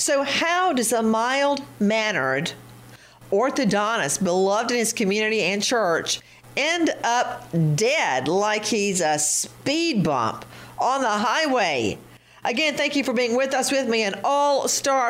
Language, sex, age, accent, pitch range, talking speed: English, female, 50-69, American, 190-250 Hz, 135 wpm